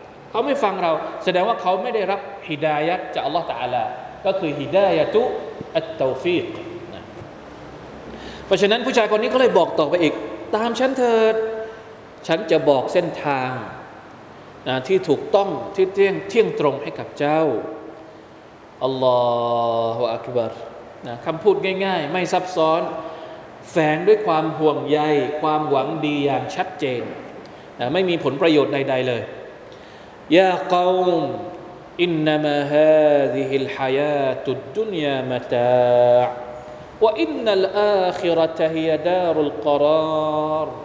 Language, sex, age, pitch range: Thai, male, 20-39, 145-220 Hz